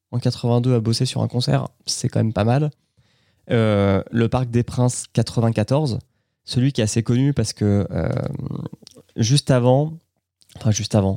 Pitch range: 105-130 Hz